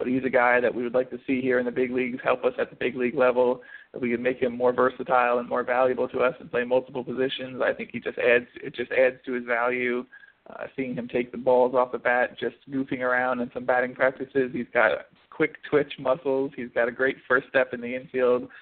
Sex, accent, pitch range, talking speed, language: male, American, 120-130 Hz, 250 wpm, English